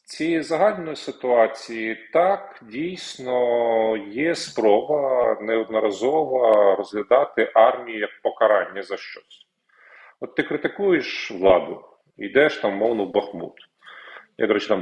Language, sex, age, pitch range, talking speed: Ukrainian, male, 40-59, 115-160 Hz, 110 wpm